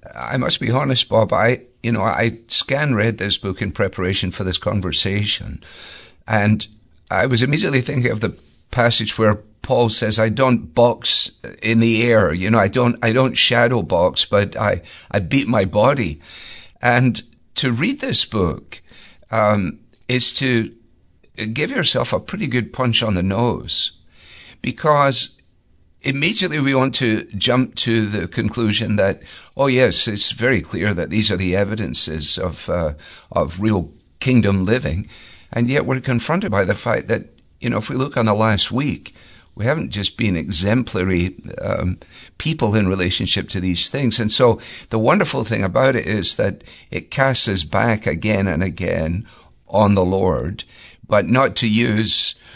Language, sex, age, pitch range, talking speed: English, male, 50-69, 95-120 Hz, 165 wpm